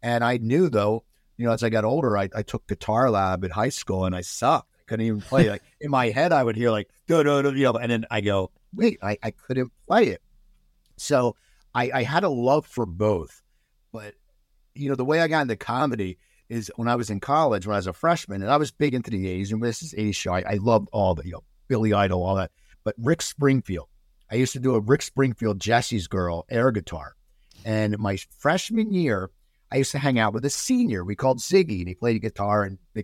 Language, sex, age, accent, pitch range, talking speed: English, male, 50-69, American, 95-125 Hz, 240 wpm